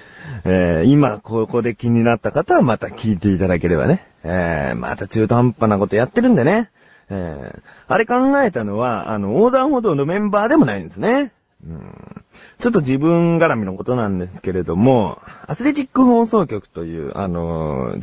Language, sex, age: Japanese, male, 40-59